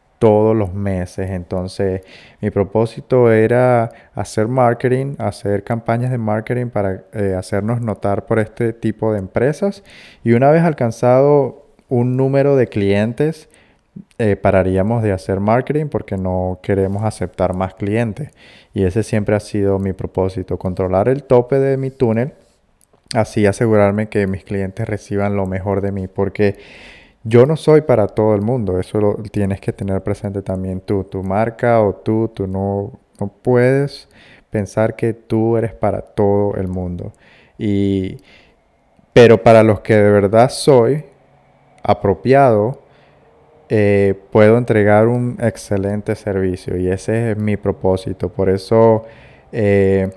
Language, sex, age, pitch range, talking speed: Spanish, male, 20-39, 100-120 Hz, 140 wpm